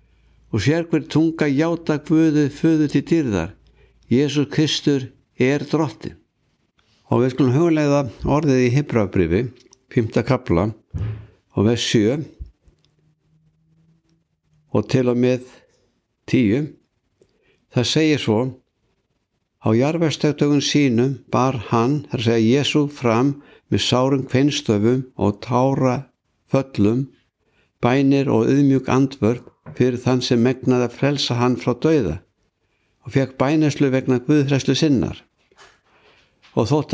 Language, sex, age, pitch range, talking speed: English, male, 60-79, 120-145 Hz, 110 wpm